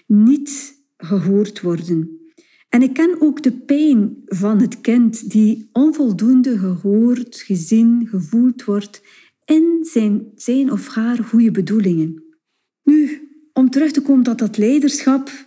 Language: Dutch